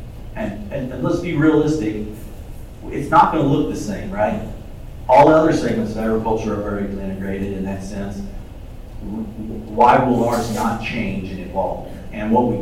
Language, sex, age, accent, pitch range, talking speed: English, male, 40-59, American, 100-125 Hz, 170 wpm